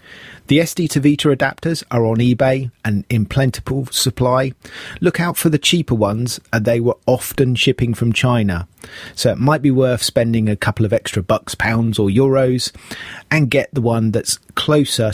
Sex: male